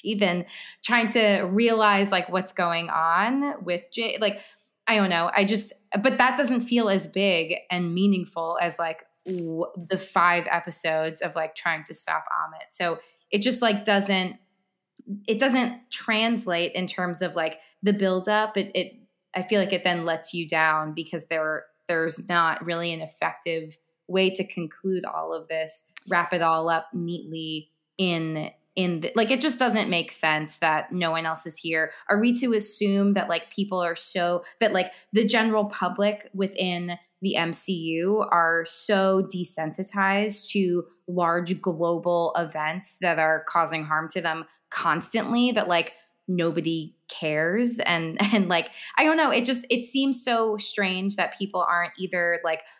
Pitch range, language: 165-205 Hz, English